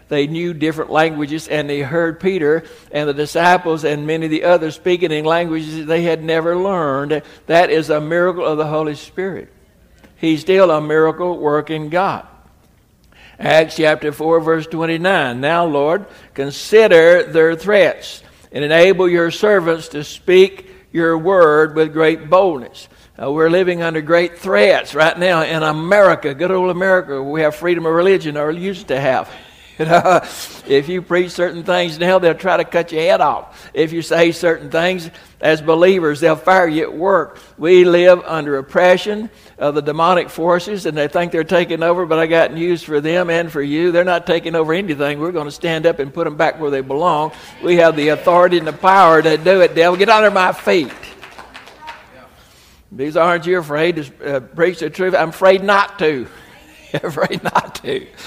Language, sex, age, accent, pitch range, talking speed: English, male, 60-79, American, 155-180 Hz, 180 wpm